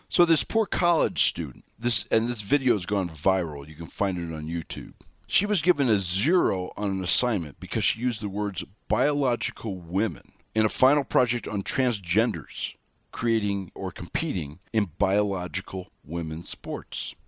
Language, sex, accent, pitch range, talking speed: English, male, American, 95-135 Hz, 160 wpm